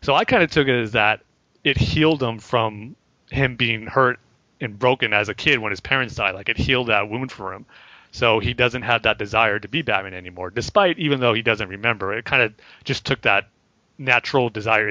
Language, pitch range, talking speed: English, 105-125 Hz, 220 wpm